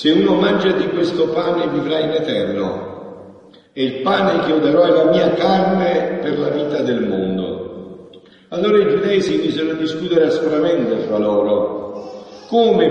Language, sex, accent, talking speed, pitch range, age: Italian, male, native, 160 wpm, 160-200 Hz, 50-69